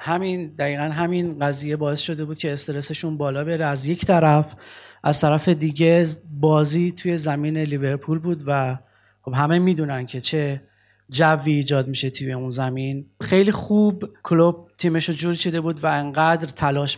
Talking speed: 160 wpm